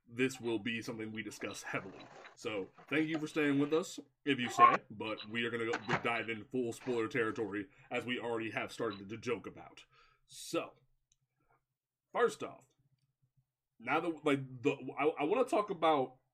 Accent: American